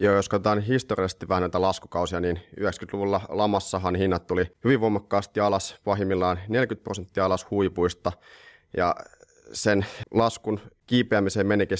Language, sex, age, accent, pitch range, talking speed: Finnish, male, 30-49, native, 90-105 Hz, 125 wpm